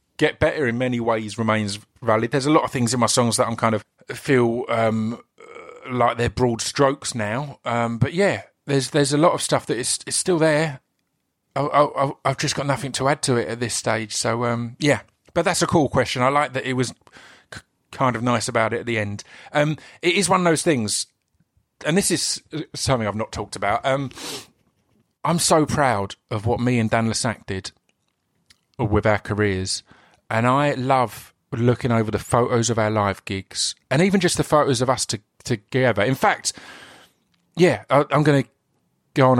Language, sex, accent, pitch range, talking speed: English, male, British, 110-145 Hz, 200 wpm